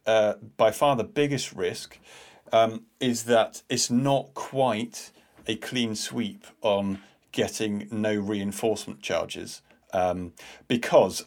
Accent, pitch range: British, 105-125 Hz